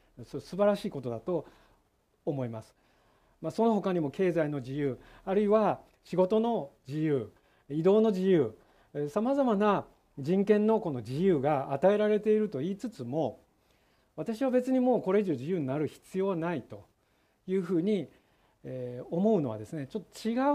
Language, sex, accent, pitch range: Japanese, male, native, 140-215 Hz